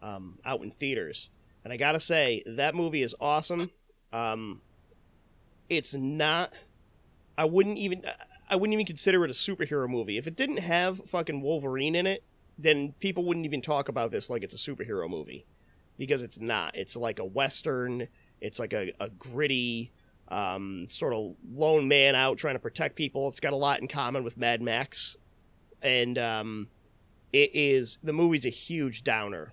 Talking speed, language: 175 wpm, English